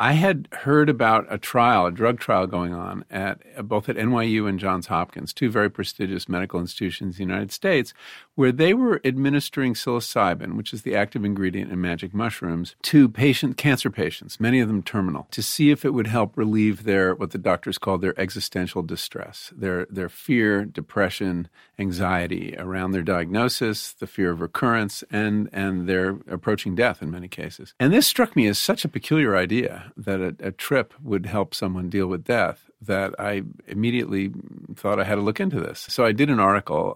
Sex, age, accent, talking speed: male, 50-69, American, 190 wpm